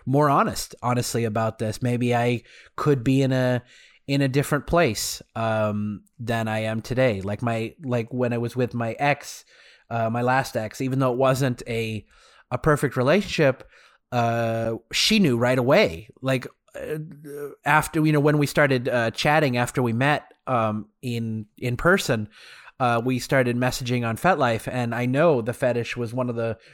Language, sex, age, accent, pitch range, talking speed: English, male, 30-49, American, 120-150 Hz, 175 wpm